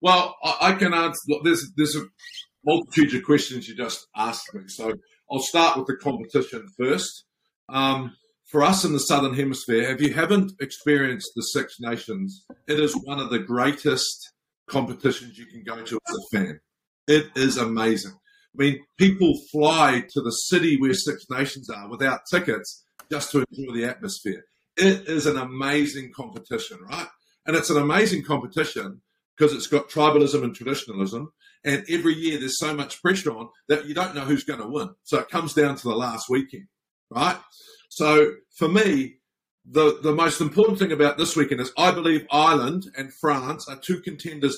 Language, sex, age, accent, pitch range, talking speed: English, male, 50-69, Australian, 135-165 Hz, 180 wpm